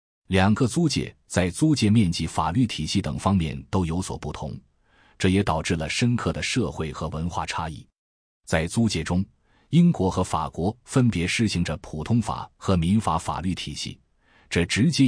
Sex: male